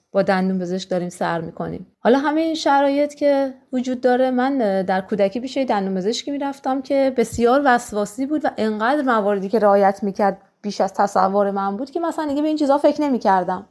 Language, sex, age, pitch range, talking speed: Persian, female, 20-39, 215-290 Hz, 200 wpm